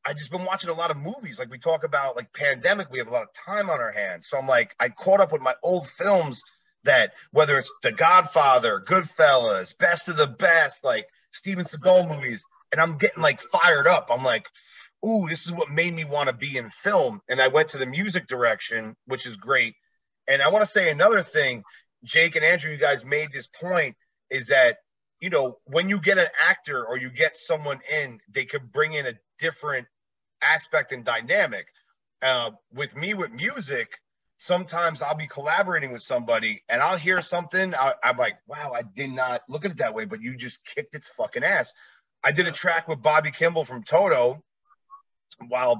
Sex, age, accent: male, 30-49, American